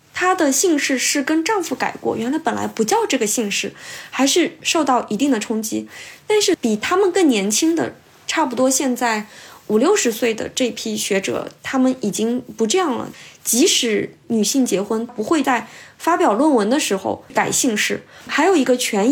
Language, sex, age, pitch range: Chinese, female, 20-39, 220-315 Hz